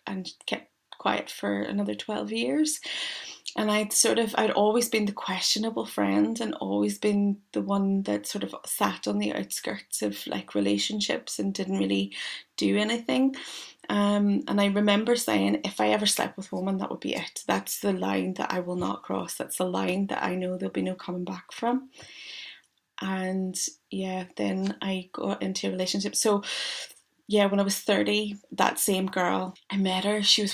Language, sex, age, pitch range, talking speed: English, female, 30-49, 180-215 Hz, 185 wpm